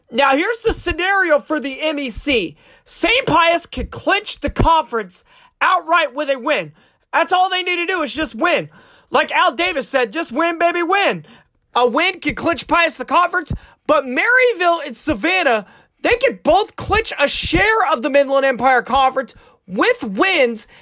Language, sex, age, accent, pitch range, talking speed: English, male, 30-49, American, 275-350 Hz, 165 wpm